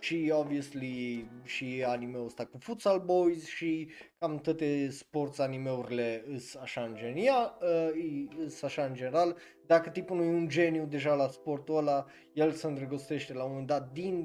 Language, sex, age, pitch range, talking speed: Romanian, male, 20-39, 125-160 Hz, 160 wpm